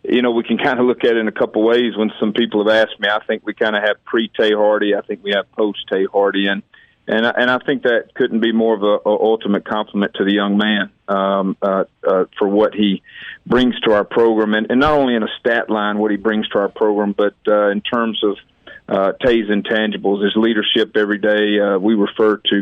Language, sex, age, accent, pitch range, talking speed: English, male, 40-59, American, 105-110 Hz, 245 wpm